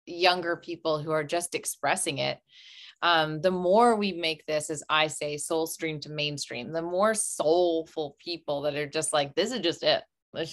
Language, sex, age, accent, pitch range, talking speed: English, female, 20-39, American, 155-190 Hz, 190 wpm